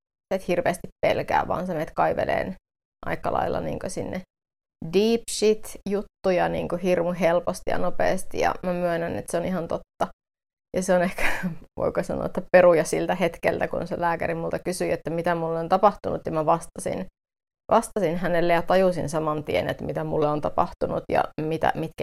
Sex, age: female, 30-49